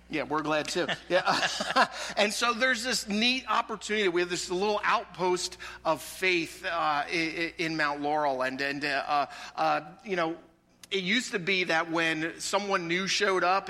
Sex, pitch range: male, 145-180 Hz